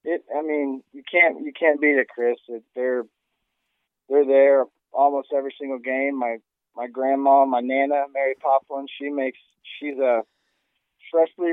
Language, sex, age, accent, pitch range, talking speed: English, male, 20-39, American, 115-135 Hz, 155 wpm